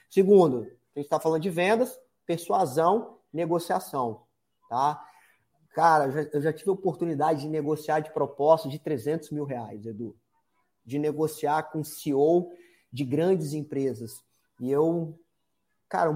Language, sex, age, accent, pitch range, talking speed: Portuguese, male, 30-49, Brazilian, 145-180 Hz, 130 wpm